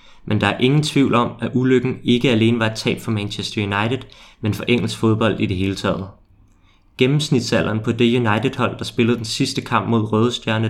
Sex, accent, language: male, native, Danish